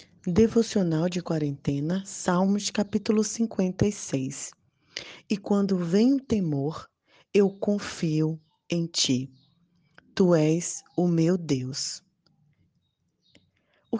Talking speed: 90 wpm